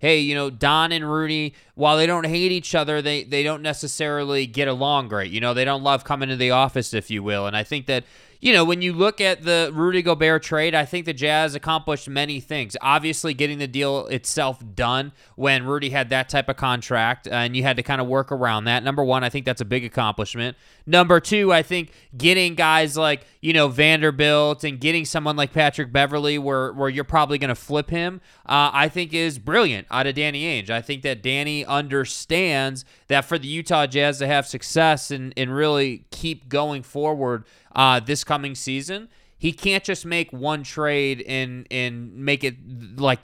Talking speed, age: 205 wpm, 20-39